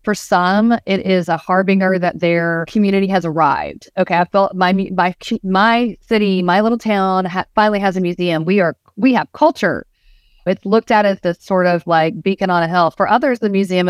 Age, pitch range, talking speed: 30-49, 175-210 Hz, 205 wpm